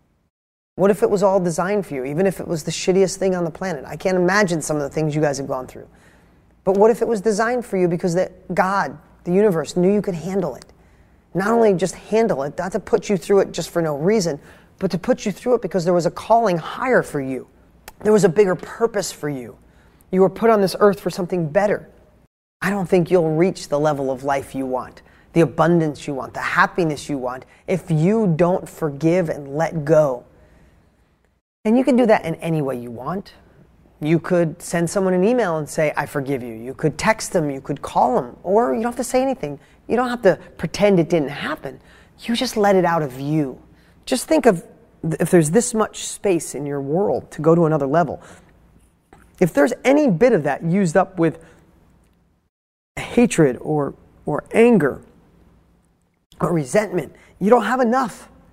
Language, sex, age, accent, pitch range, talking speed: English, male, 30-49, American, 150-205 Hz, 210 wpm